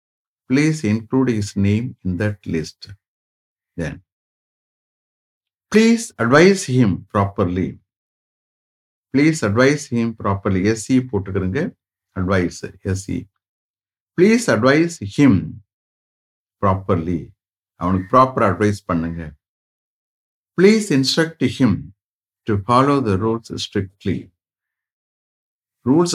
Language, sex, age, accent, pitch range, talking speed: English, male, 50-69, Indian, 95-125 Hz, 75 wpm